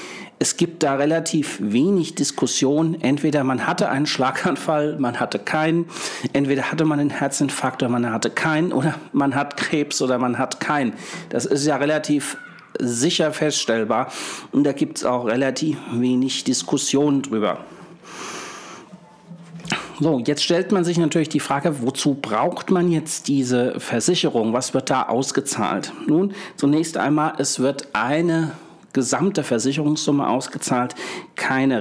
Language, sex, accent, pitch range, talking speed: German, male, German, 135-160 Hz, 140 wpm